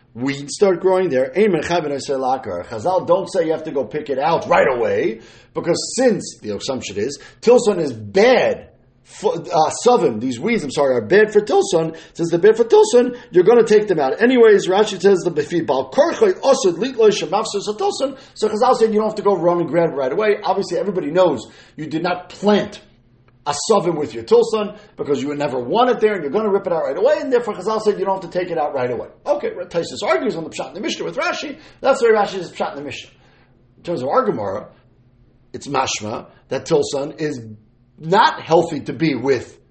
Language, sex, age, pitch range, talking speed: English, male, 40-59, 140-230 Hz, 205 wpm